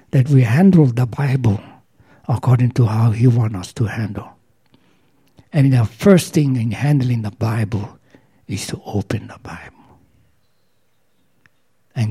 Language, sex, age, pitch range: English, male, 60-79, 115-135 Hz